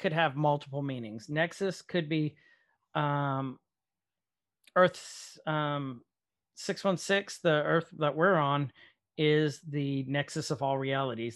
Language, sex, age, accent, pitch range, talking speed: English, male, 40-59, American, 135-160 Hz, 115 wpm